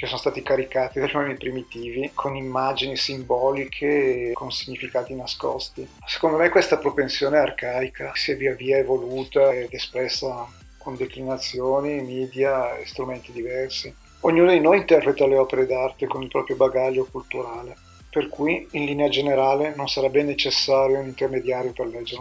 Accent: native